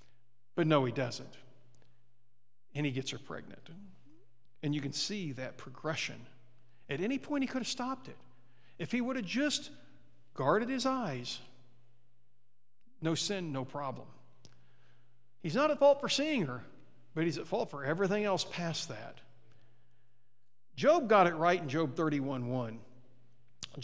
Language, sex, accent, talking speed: English, male, American, 145 wpm